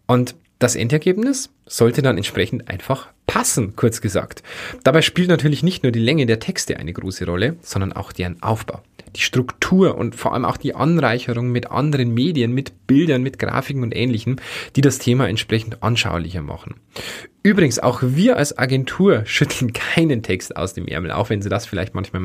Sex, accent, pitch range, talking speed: male, German, 110-160 Hz, 180 wpm